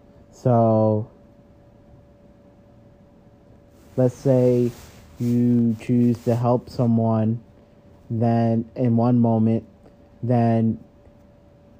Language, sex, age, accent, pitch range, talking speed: English, male, 30-49, American, 110-125 Hz, 65 wpm